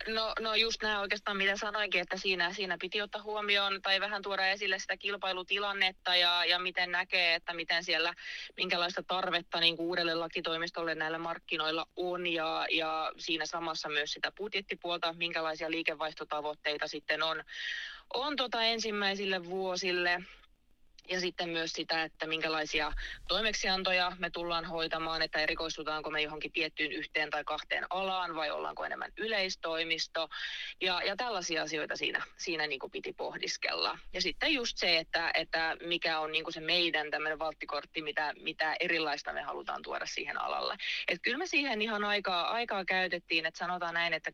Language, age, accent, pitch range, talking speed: Finnish, 20-39, native, 160-190 Hz, 155 wpm